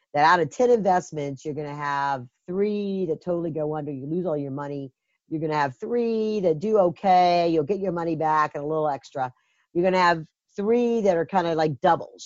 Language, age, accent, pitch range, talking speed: English, 50-69, American, 155-210 Hz, 230 wpm